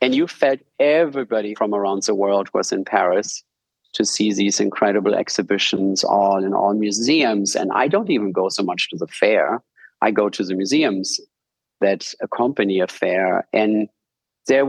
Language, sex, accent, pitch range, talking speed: English, male, German, 105-135 Hz, 170 wpm